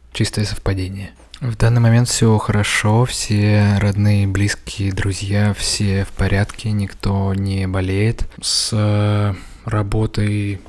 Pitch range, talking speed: 100-110 Hz, 105 wpm